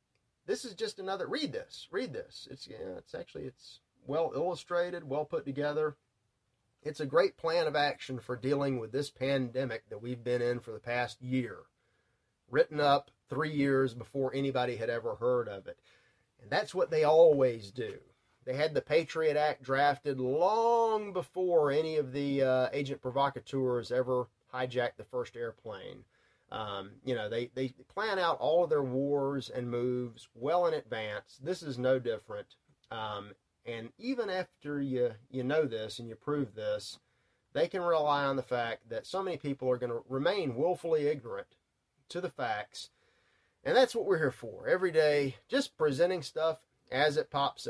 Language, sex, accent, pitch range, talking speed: English, male, American, 125-210 Hz, 175 wpm